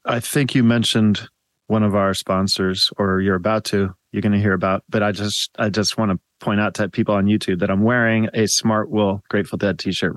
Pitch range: 105-125 Hz